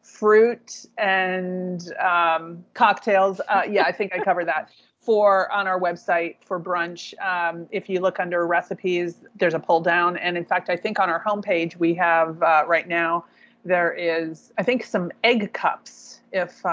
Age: 30-49